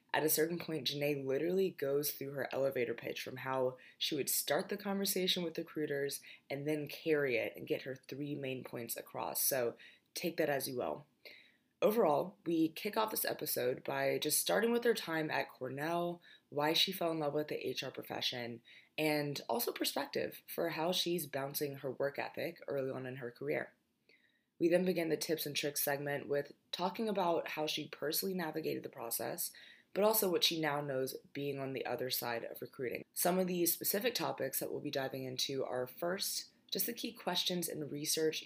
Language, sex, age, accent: English, female, 20-39, American